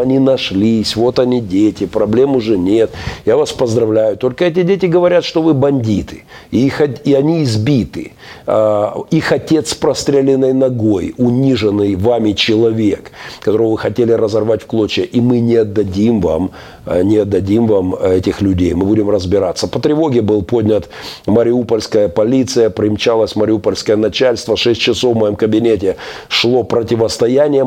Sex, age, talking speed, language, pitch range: male, 50-69, 140 wpm, Russian, 105-130 Hz